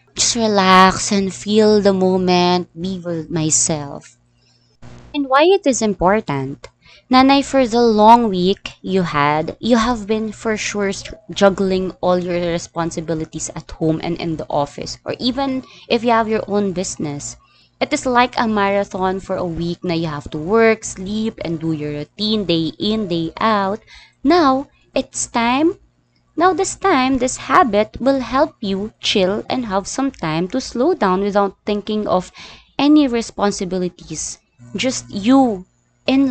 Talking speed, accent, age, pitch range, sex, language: 155 wpm, Filipino, 20-39, 170-240 Hz, female, English